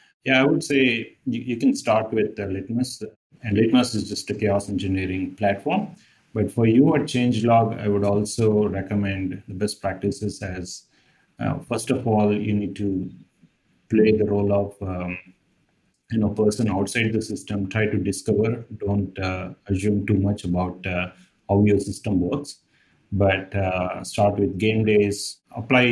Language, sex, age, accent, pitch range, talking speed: English, male, 30-49, Indian, 95-110 Hz, 165 wpm